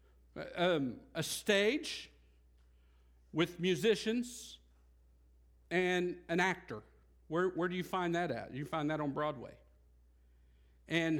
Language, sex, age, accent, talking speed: English, male, 50-69, American, 115 wpm